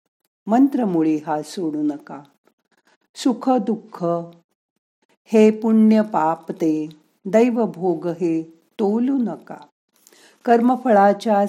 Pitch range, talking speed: 160-220 Hz, 80 wpm